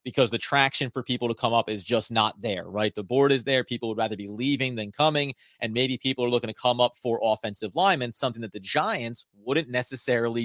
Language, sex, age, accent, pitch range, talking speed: English, male, 30-49, American, 115-140 Hz, 235 wpm